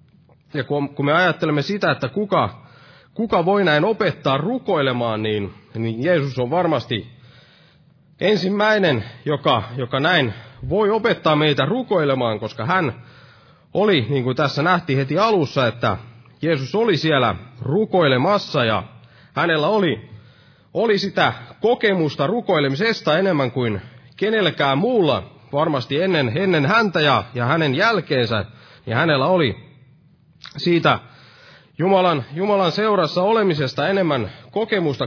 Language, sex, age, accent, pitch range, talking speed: Finnish, male, 30-49, native, 125-175 Hz, 115 wpm